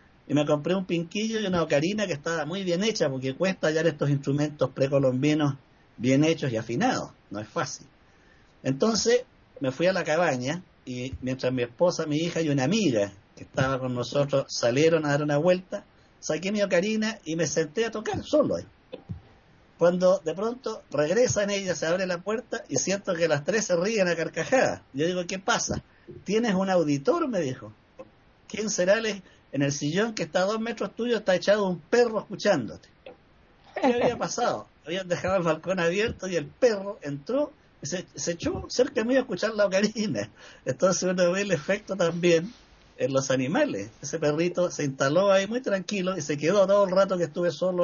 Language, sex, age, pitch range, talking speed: Spanish, male, 50-69, 140-195 Hz, 190 wpm